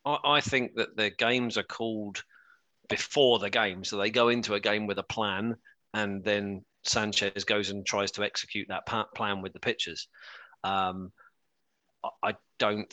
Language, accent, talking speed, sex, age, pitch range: English, British, 160 wpm, male, 40-59, 105-125 Hz